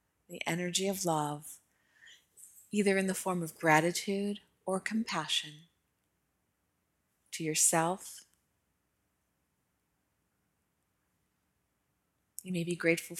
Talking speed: 80 wpm